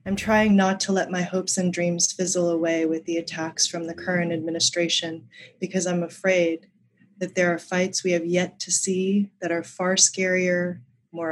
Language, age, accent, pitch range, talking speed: English, 30-49, American, 170-190 Hz, 185 wpm